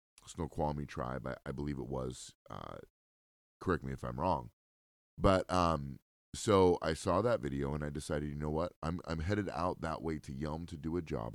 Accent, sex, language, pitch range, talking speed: American, male, English, 70-85 Hz, 200 wpm